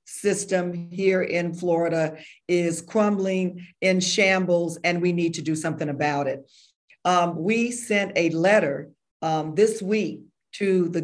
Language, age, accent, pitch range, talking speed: English, 50-69, American, 170-205 Hz, 140 wpm